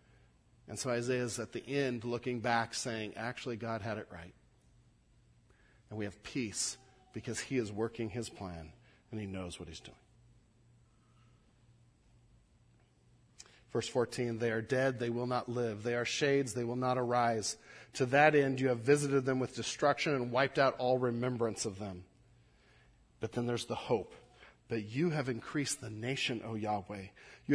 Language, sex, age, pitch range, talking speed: English, male, 40-59, 110-130 Hz, 170 wpm